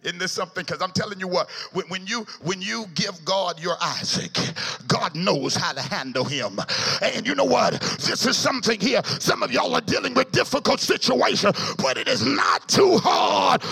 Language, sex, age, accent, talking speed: English, male, 50-69, American, 195 wpm